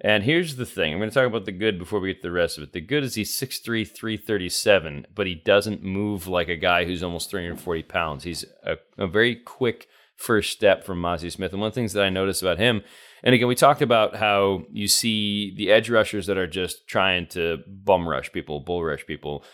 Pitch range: 90-115 Hz